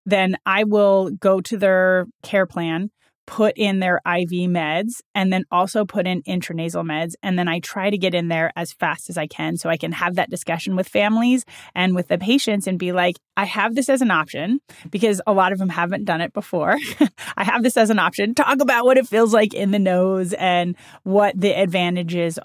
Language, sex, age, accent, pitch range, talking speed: English, female, 30-49, American, 170-205 Hz, 220 wpm